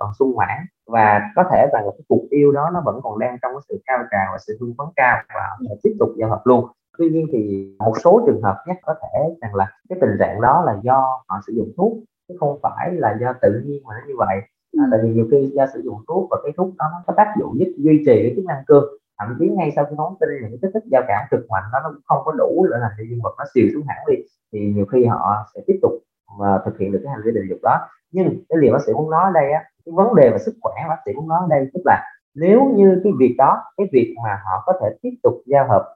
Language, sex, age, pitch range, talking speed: Vietnamese, male, 20-39, 120-195 Hz, 280 wpm